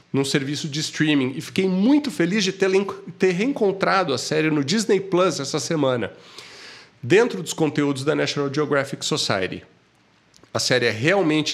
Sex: male